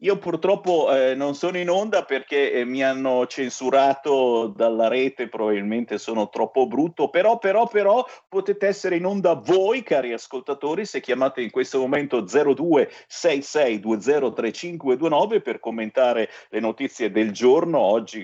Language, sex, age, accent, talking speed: Italian, male, 50-69, native, 130 wpm